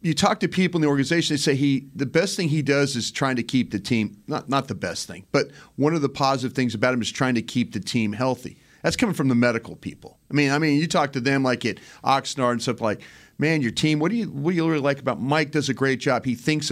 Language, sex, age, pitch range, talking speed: English, male, 40-59, 125-150 Hz, 285 wpm